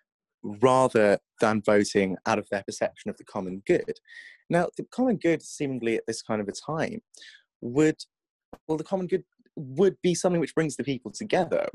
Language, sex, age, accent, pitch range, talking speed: English, male, 20-39, British, 110-155 Hz, 180 wpm